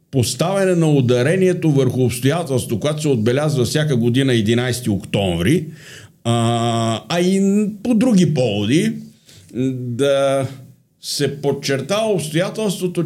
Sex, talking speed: male, 90 wpm